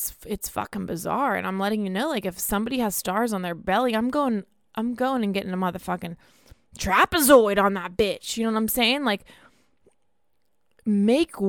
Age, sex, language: 20-39, female, English